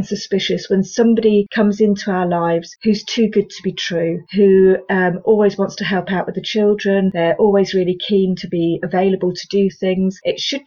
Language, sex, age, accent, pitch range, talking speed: English, female, 40-59, British, 190-220 Hz, 195 wpm